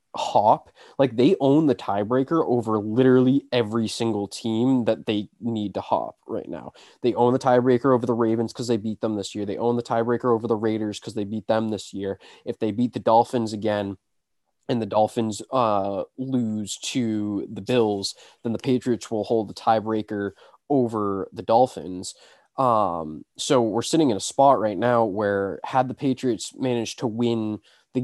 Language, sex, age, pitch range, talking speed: English, male, 20-39, 105-125 Hz, 180 wpm